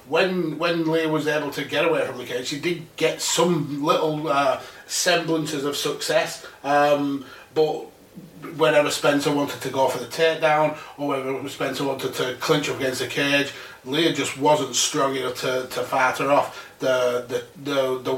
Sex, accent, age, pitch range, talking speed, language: male, British, 30-49, 135-155 Hz, 180 wpm, English